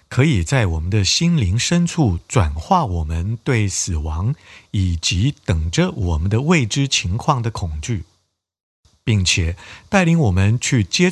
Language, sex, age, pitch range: Chinese, male, 50-69, 90-135 Hz